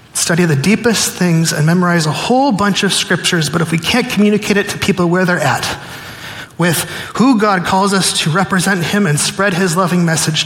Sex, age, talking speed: male, 30-49, 200 wpm